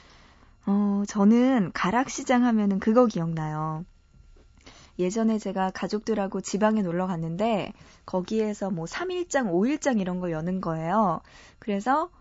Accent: native